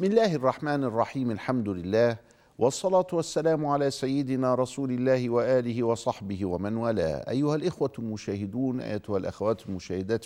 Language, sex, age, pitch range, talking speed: Arabic, male, 50-69, 100-130 Hz, 130 wpm